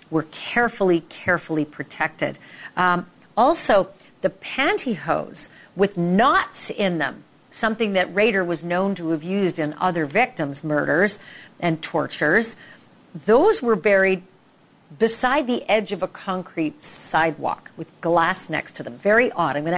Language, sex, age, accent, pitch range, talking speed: English, female, 50-69, American, 160-215 Hz, 135 wpm